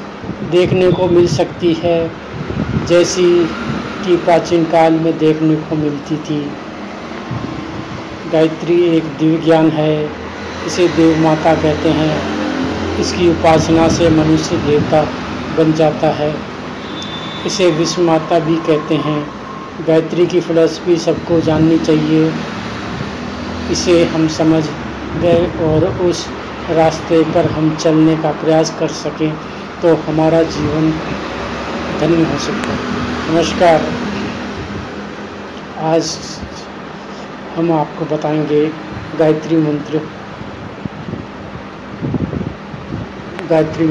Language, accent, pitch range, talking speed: Hindi, native, 155-170 Hz, 100 wpm